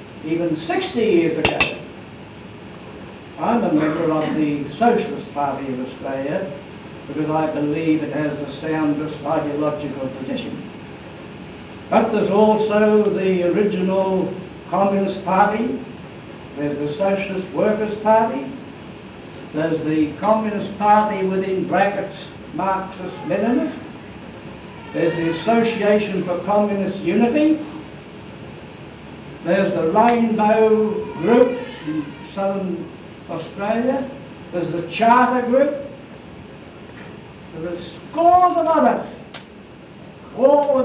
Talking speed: 95 wpm